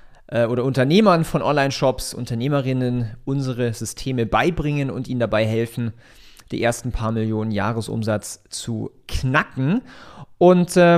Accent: German